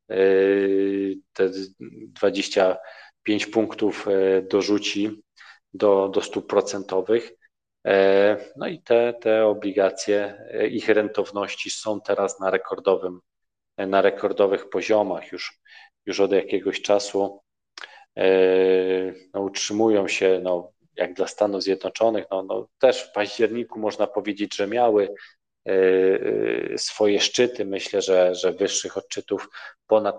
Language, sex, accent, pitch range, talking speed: Polish, male, native, 95-105 Hz, 105 wpm